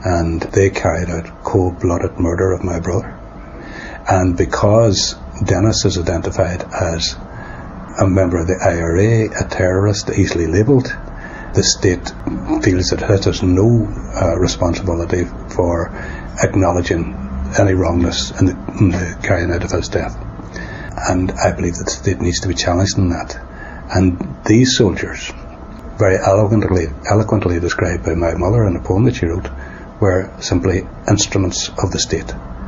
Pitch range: 85-105 Hz